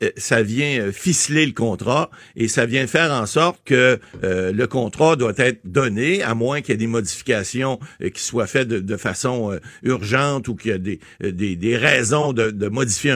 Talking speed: 200 wpm